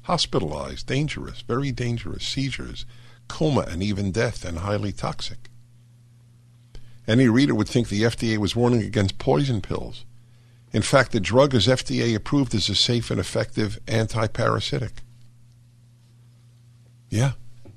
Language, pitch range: English, 110-120 Hz